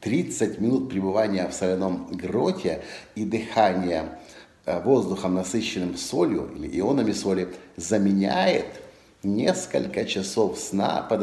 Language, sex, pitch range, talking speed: Russian, male, 100-120 Hz, 100 wpm